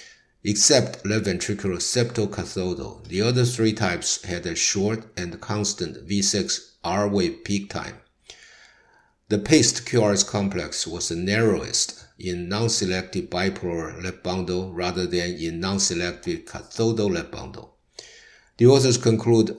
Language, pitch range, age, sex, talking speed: English, 90-110 Hz, 60-79, male, 125 wpm